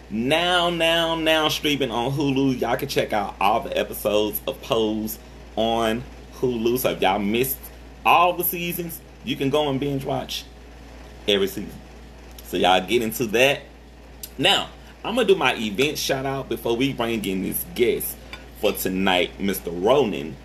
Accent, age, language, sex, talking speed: American, 30-49, English, male, 165 wpm